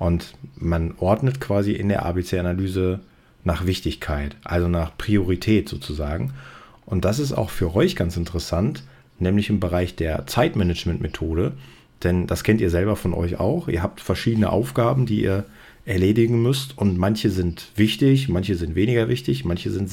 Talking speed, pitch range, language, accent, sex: 155 wpm, 85-110 Hz, German, German, male